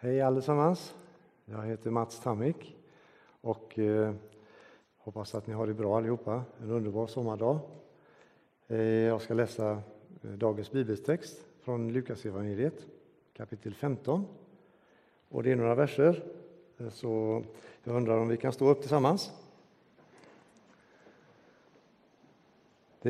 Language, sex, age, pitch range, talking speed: Swedish, male, 50-69, 110-150 Hz, 110 wpm